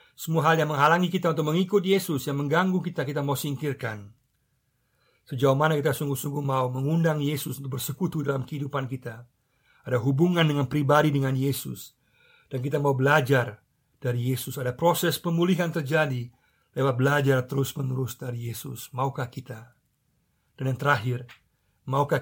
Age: 50-69